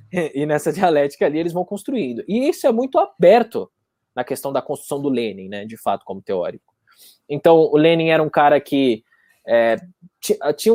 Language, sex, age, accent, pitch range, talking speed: Portuguese, male, 20-39, Brazilian, 145-215 Hz, 180 wpm